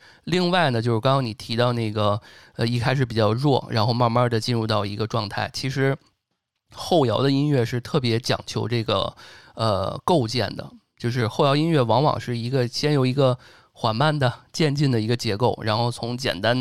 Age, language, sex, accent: 20-39, Chinese, male, native